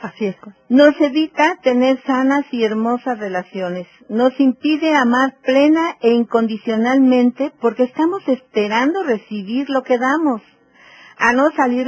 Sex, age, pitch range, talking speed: female, 50-69, 210-270 Hz, 125 wpm